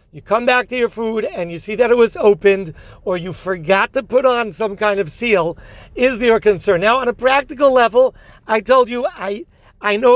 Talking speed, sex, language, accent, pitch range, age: 220 wpm, male, English, American, 210-255 Hz, 40-59